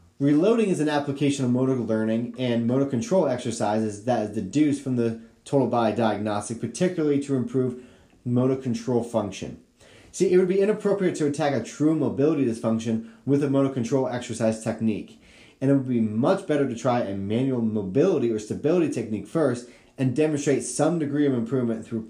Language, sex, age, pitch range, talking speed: English, male, 30-49, 115-145 Hz, 175 wpm